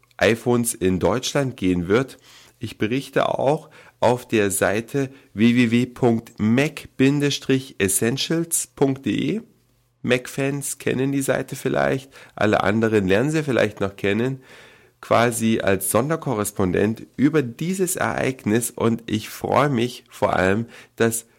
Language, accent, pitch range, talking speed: German, German, 105-130 Hz, 105 wpm